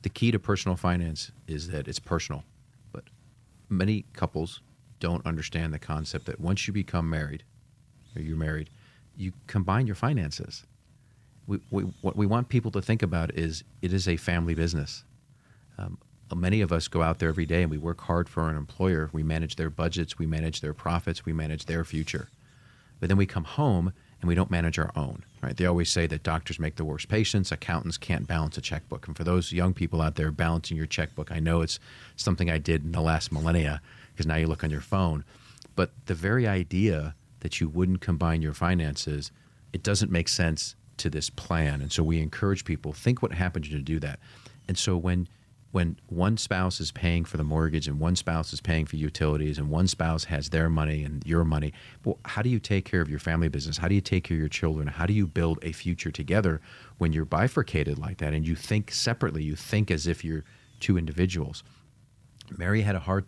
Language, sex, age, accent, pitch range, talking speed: English, male, 40-59, American, 80-105 Hz, 210 wpm